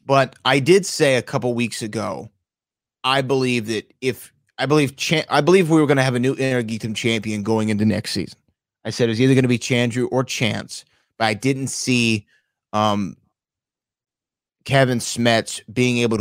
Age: 30-49